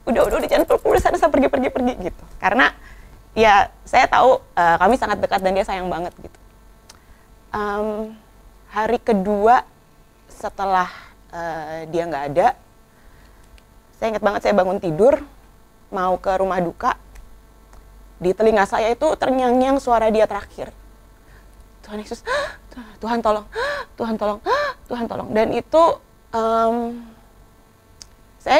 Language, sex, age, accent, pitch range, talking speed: Indonesian, female, 20-39, native, 200-245 Hz, 140 wpm